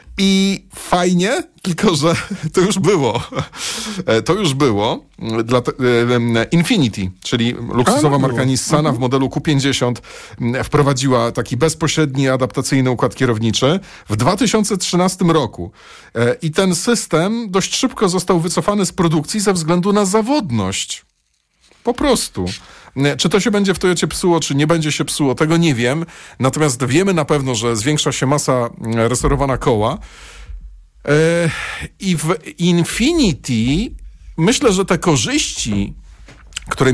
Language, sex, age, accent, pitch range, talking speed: Polish, male, 40-59, native, 120-180 Hz, 125 wpm